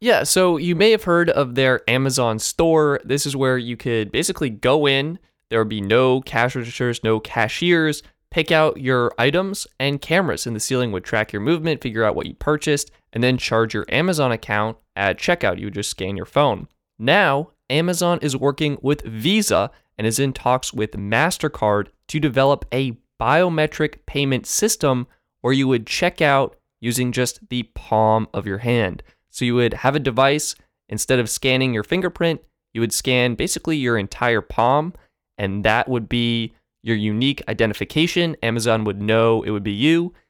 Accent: American